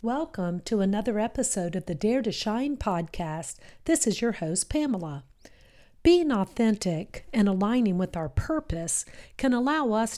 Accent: American